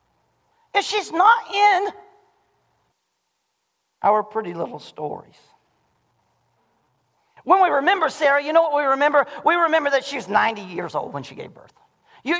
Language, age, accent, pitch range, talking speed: English, 40-59, American, 285-400 Hz, 145 wpm